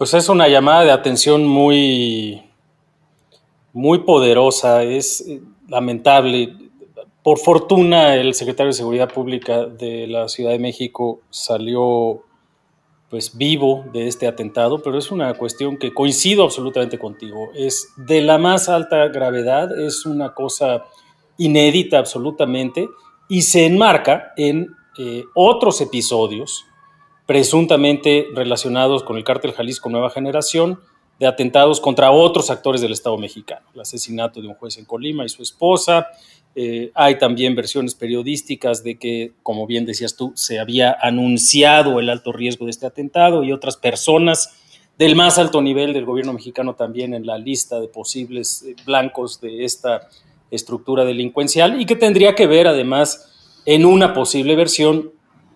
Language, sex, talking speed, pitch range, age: Spanish, male, 140 wpm, 120-155 Hz, 40-59